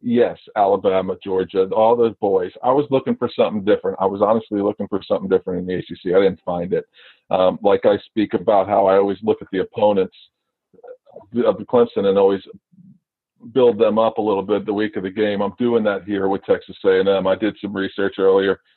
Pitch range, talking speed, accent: 100-130 Hz, 215 wpm, American